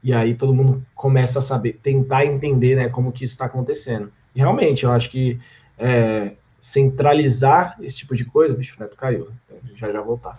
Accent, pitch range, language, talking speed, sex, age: Brazilian, 120-155 Hz, Portuguese, 195 wpm, male, 20-39